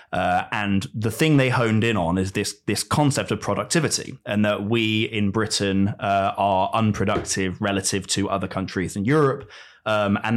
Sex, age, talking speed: male, 20-39, 175 wpm